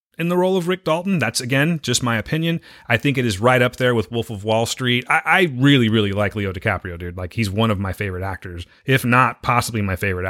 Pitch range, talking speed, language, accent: 105-140 Hz, 250 wpm, English, American